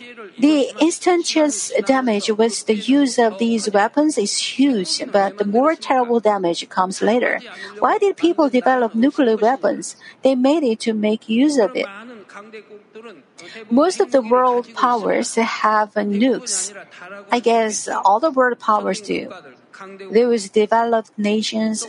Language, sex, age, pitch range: Korean, female, 50-69, 215-270 Hz